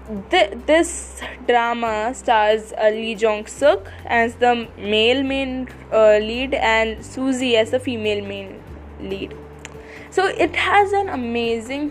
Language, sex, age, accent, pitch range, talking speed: English, female, 10-29, Indian, 220-285 Hz, 110 wpm